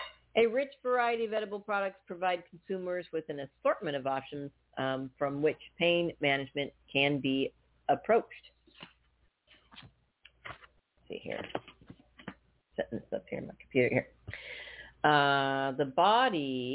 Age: 40-59